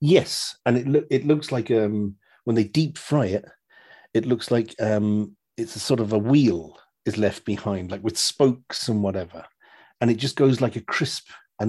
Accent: British